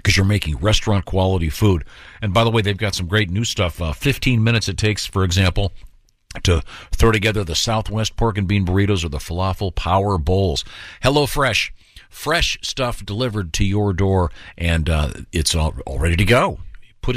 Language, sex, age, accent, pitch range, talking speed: English, male, 50-69, American, 85-110 Hz, 180 wpm